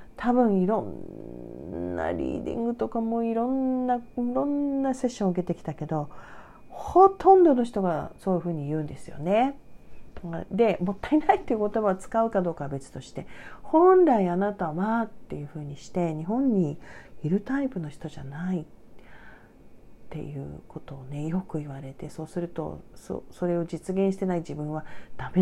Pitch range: 160-240 Hz